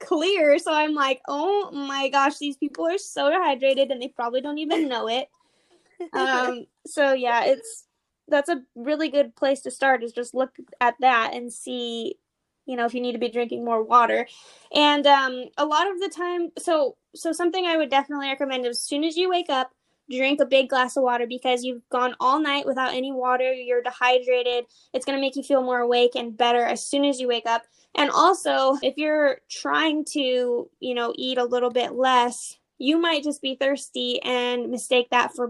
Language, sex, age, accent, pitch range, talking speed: English, female, 10-29, American, 245-285 Hz, 205 wpm